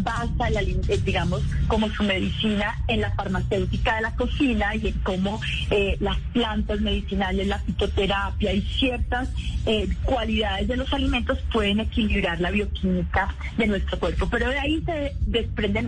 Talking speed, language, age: 145 wpm, Spanish, 30-49